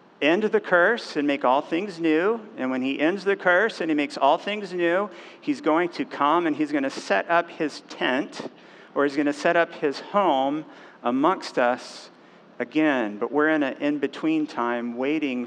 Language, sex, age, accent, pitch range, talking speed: English, male, 50-69, American, 135-175 Hz, 195 wpm